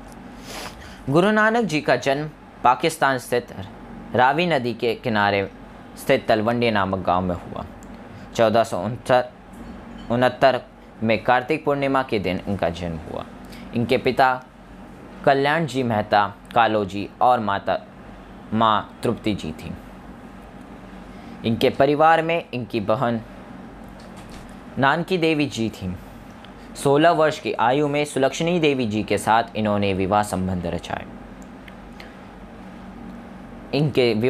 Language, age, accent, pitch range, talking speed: Hindi, 20-39, native, 105-150 Hz, 110 wpm